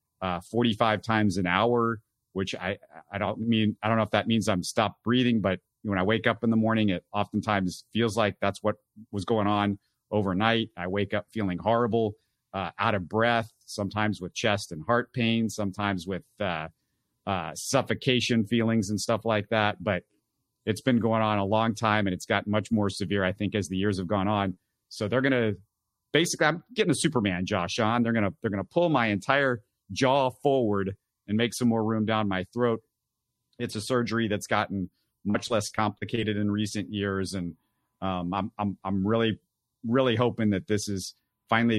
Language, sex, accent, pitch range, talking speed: English, male, American, 100-115 Hz, 190 wpm